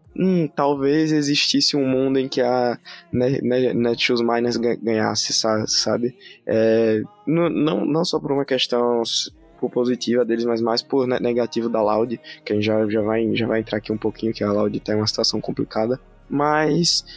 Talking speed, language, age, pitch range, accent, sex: 155 wpm, Portuguese, 20-39, 115-145 Hz, Brazilian, male